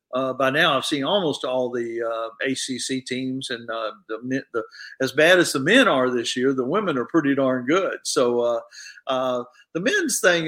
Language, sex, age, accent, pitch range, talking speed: English, male, 50-69, American, 130-175 Hz, 200 wpm